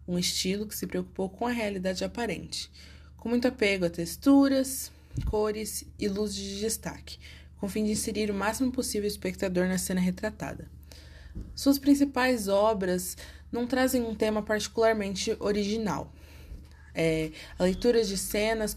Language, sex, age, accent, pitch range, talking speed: Portuguese, female, 20-39, Brazilian, 175-225 Hz, 145 wpm